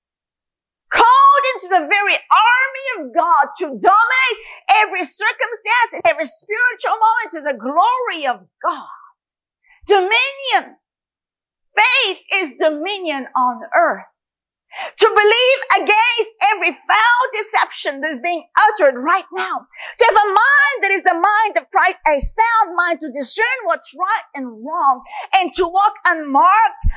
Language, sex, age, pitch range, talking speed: English, female, 40-59, 280-425 Hz, 135 wpm